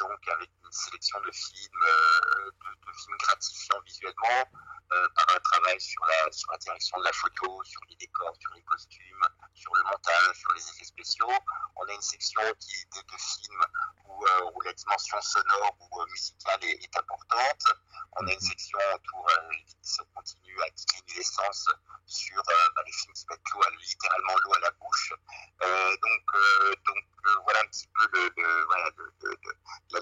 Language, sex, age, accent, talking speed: French, male, 50-69, French, 180 wpm